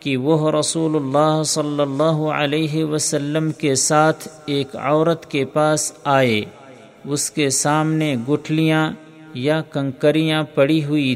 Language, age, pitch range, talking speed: Urdu, 50-69, 145-155 Hz, 125 wpm